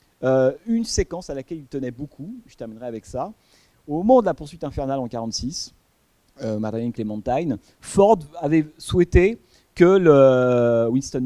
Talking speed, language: 155 wpm, French